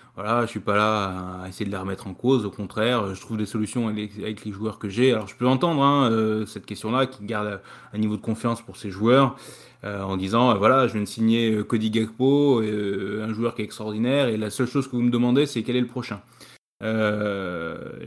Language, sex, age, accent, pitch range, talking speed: French, male, 20-39, French, 110-130 Hz, 240 wpm